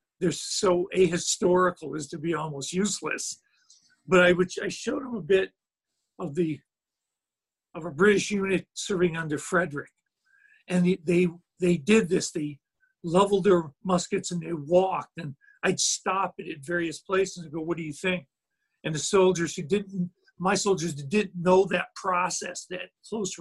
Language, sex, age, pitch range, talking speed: English, male, 50-69, 175-215 Hz, 165 wpm